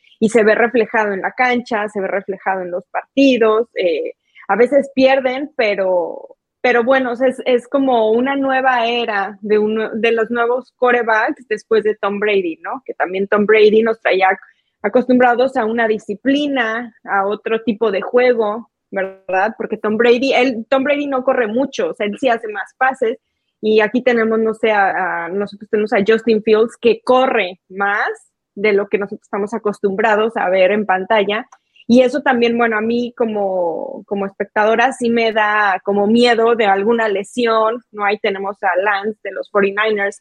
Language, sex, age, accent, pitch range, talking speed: Spanish, female, 20-39, Mexican, 205-250 Hz, 175 wpm